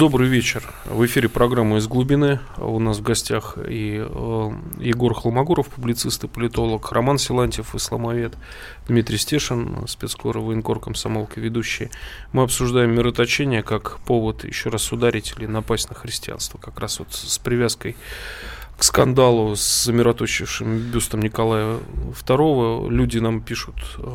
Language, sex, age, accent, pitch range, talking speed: Russian, male, 20-39, native, 115-130 Hz, 135 wpm